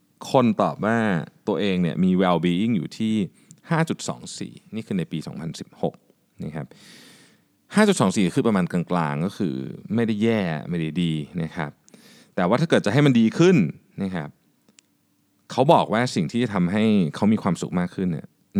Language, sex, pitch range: Thai, male, 90-125 Hz